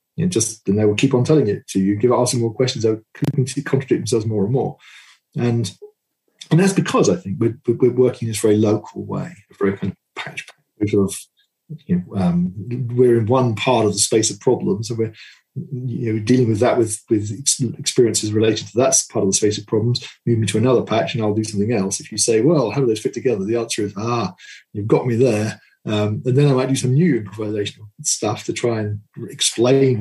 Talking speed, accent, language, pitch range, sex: 235 wpm, British, English, 105-130 Hz, male